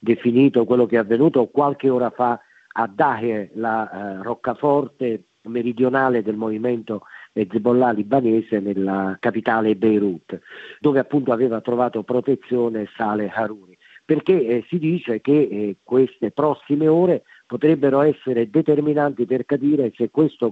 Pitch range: 115-140 Hz